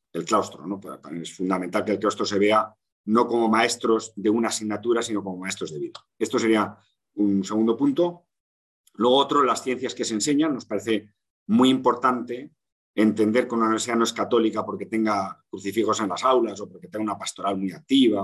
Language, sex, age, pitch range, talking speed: Italian, male, 40-59, 100-125 Hz, 190 wpm